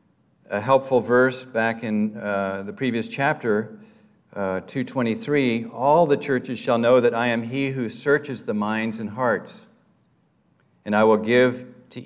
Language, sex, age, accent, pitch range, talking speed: English, male, 50-69, American, 105-125 Hz, 155 wpm